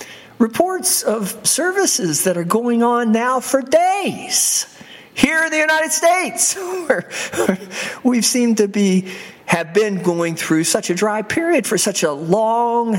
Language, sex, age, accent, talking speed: English, male, 50-69, American, 145 wpm